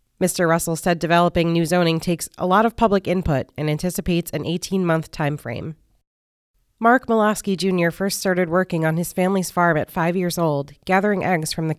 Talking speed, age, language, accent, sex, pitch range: 185 wpm, 30-49, English, American, female, 155-190 Hz